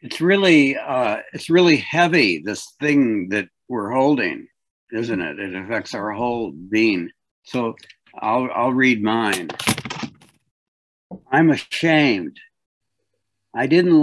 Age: 60-79